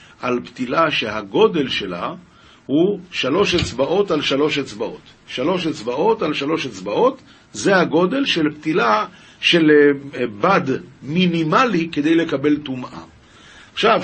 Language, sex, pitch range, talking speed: Hebrew, male, 130-190 Hz, 110 wpm